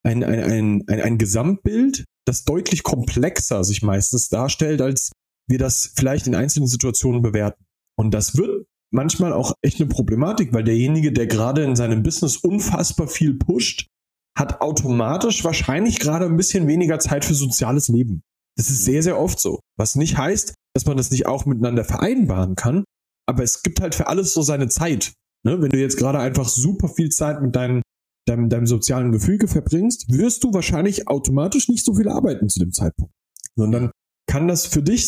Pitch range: 115-175 Hz